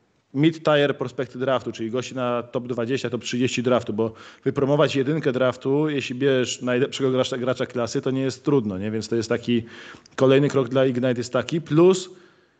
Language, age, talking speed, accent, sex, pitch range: Polish, 20-39, 175 wpm, native, male, 120-140 Hz